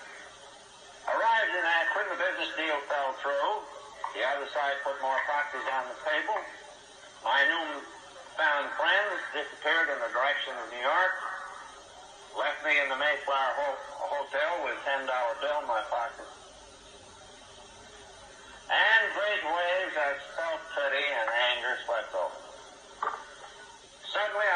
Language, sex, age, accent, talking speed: English, male, 60-79, American, 130 wpm